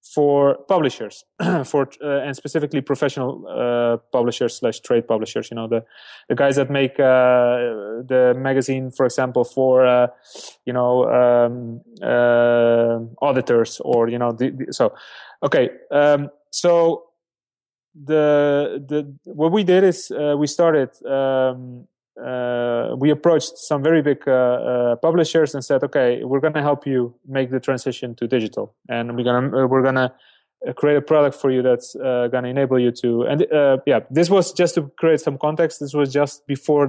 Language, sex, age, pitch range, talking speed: English, male, 20-39, 125-150 Hz, 170 wpm